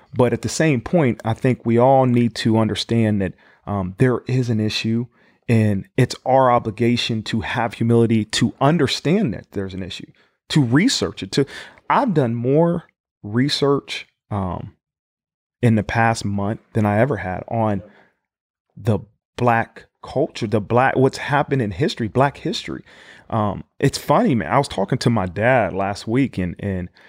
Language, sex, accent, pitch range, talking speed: English, male, American, 105-135 Hz, 165 wpm